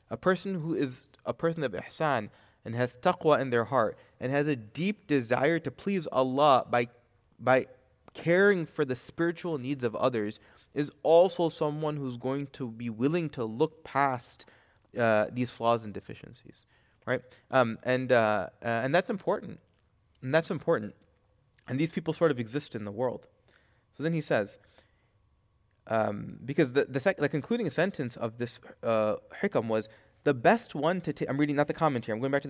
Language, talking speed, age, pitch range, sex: English, 180 wpm, 30-49, 115-155 Hz, male